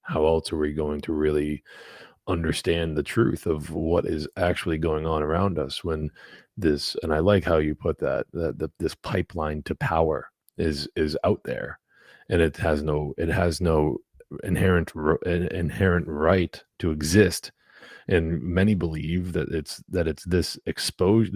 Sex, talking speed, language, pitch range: male, 165 wpm, English, 80-95 Hz